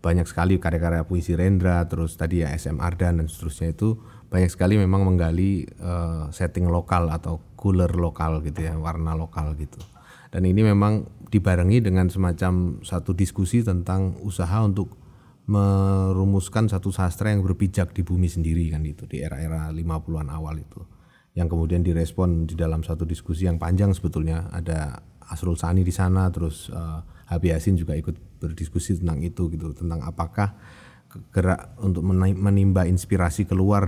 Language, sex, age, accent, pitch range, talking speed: Indonesian, male, 30-49, native, 80-95 Hz, 150 wpm